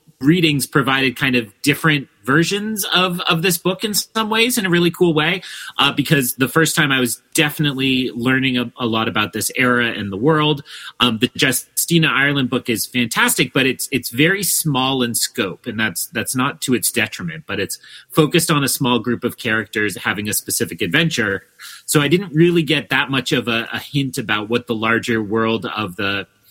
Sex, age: male, 30-49